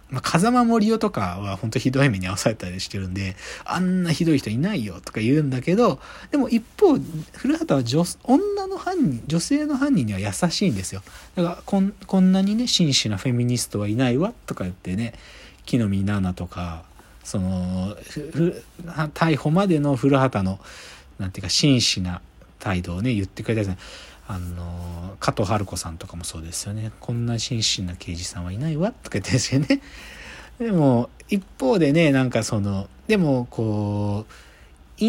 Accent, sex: native, male